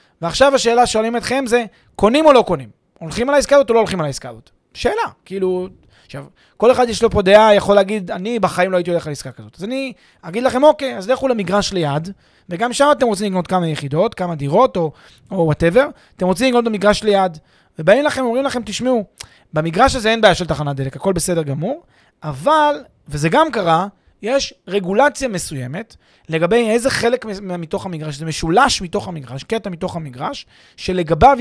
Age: 20-39